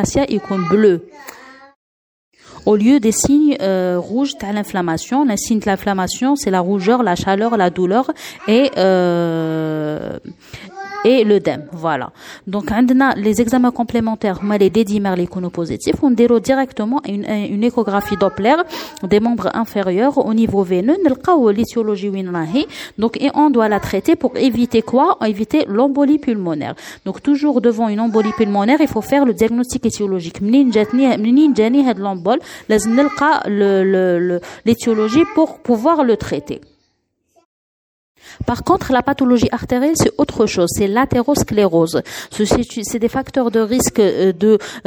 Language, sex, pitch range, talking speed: French, female, 200-265 Hz, 130 wpm